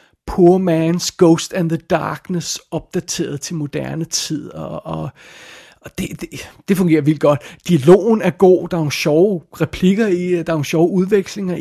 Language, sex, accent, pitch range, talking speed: Danish, male, native, 150-180 Hz, 160 wpm